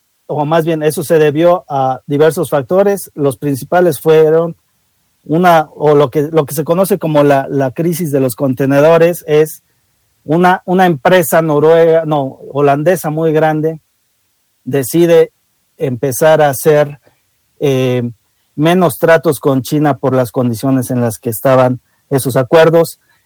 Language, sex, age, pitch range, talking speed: Spanish, male, 50-69, 130-165 Hz, 140 wpm